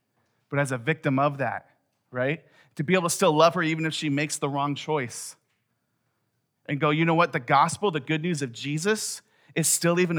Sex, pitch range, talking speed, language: male, 130-160 Hz, 210 wpm, English